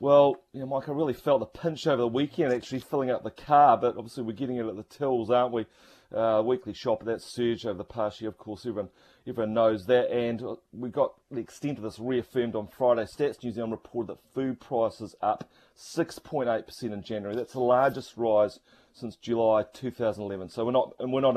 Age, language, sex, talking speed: 30-49, English, male, 215 wpm